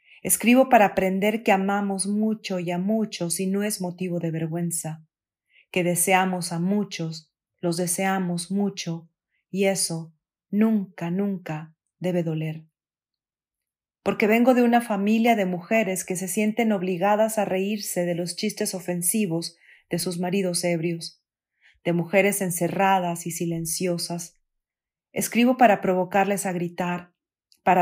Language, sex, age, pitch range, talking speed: Spanish, female, 40-59, 170-200 Hz, 130 wpm